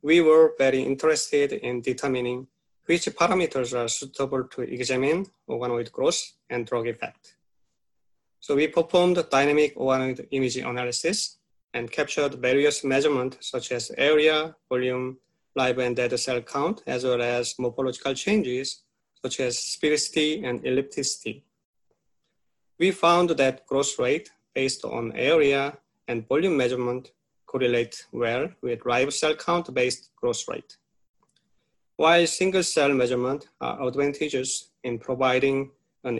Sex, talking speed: male, 125 wpm